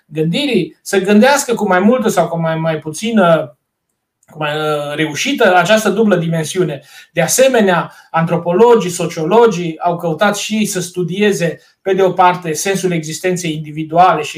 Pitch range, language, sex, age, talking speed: 170-230 Hz, Romanian, male, 30-49, 130 wpm